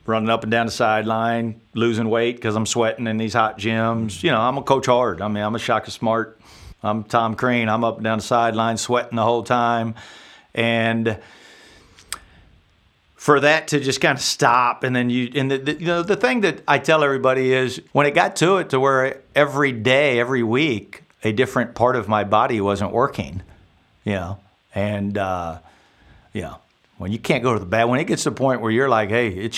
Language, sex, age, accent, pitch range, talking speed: English, male, 50-69, American, 105-125 Hz, 215 wpm